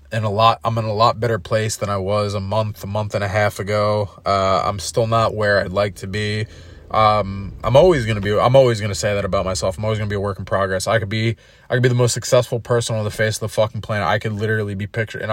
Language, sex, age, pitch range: English, male, 20-39, 100-115 Hz